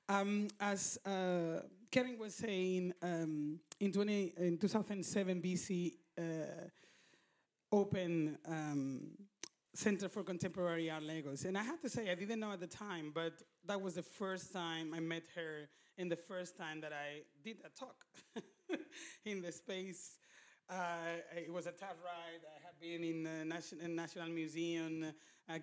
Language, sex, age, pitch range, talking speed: English, male, 30-49, 155-180 Hz, 160 wpm